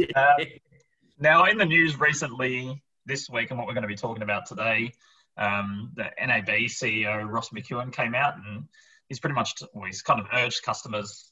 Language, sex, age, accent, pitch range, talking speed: English, male, 20-39, Australian, 105-125 Hz, 185 wpm